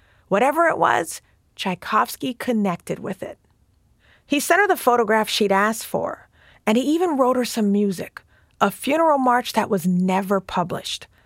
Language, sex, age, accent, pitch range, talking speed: English, female, 30-49, American, 190-255 Hz, 155 wpm